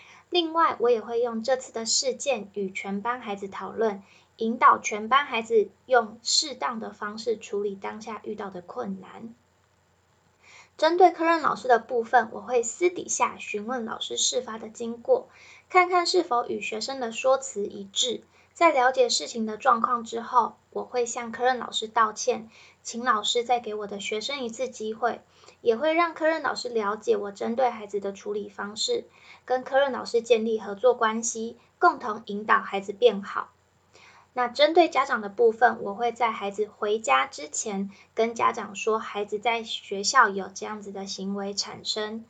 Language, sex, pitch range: Chinese, female, 210-255 Hz